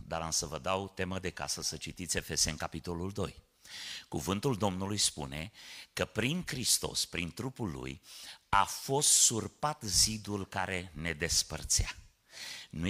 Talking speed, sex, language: 140 wpm, male, Romanian